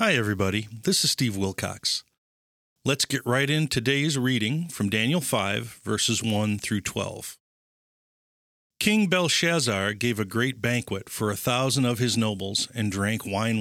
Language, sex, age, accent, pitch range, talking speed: English, male, 50-69, American, 105-140 Hz, 150 wpm